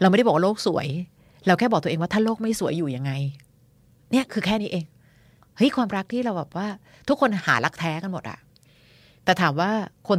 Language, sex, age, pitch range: Thai, female, 30-49, 155-205 Hz